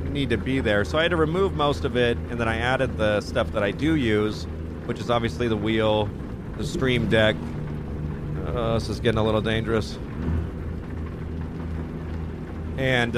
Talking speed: 175 wpm